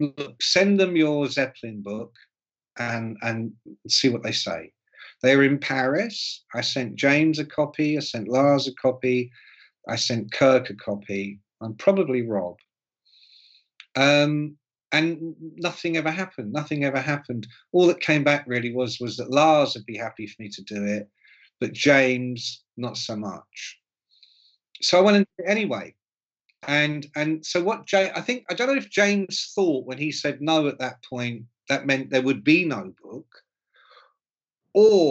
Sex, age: male, 50-69